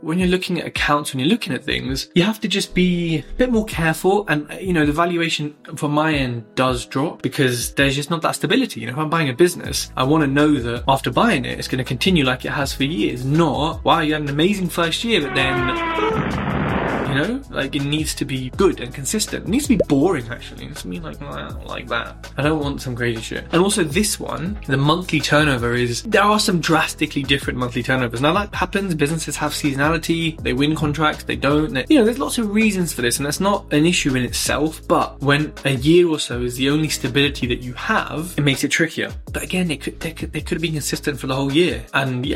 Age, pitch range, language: 10-29, 130-170 Hz, English